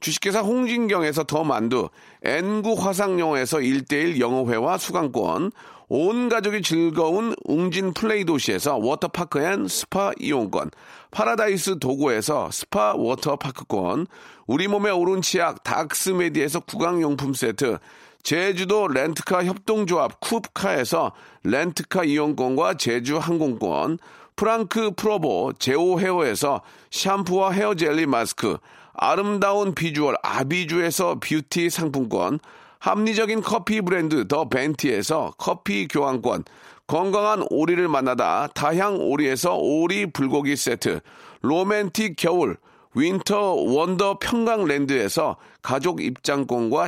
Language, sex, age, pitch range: Korean, male, 40-59, 155-205 Hz